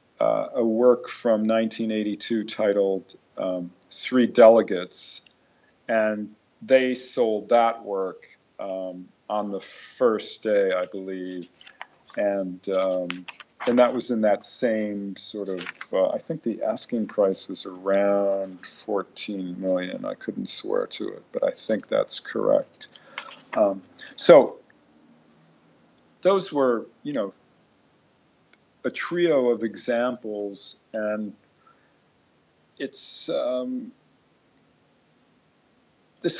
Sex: male